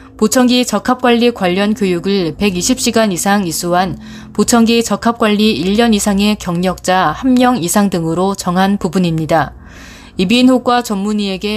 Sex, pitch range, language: female, 180-230 Hz, Korean